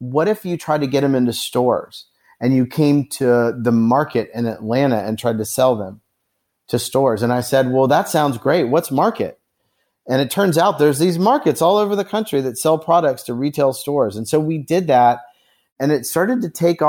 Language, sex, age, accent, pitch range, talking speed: English, male, 30-49, American, 120-150 Hz, 215 wpm